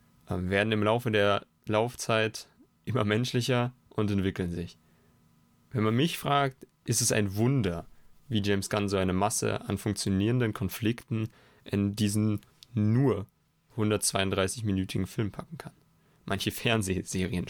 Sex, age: male, 30-49